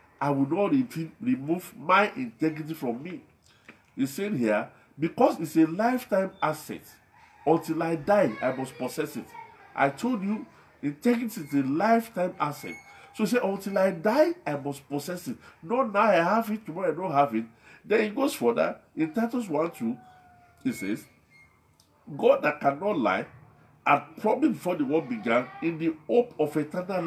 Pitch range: 140-210 Hz